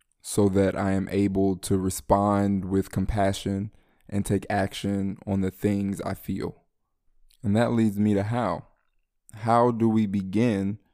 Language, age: English, 20-39